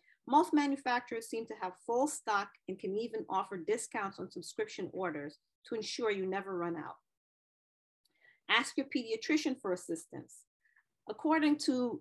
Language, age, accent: English, 40-59, American